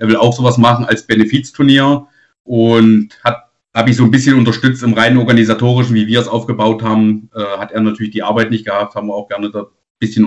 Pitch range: 110-125 Hz